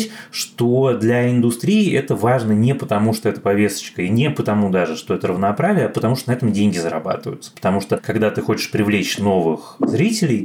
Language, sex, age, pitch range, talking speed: Russian, male, 20-39, 105-135 Hz, 185 wpm